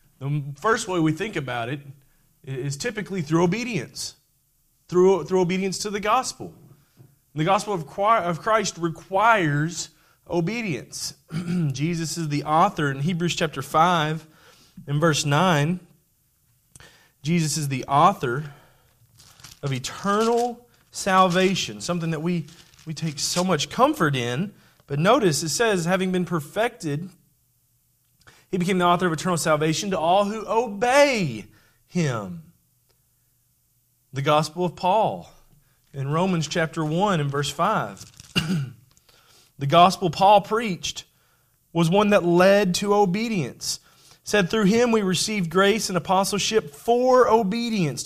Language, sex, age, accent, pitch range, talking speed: English, male, 30-49, American, 140-185 Hz, 125 wpm